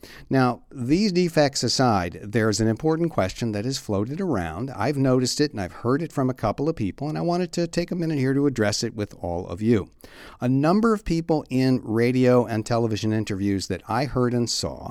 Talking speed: 215 wpm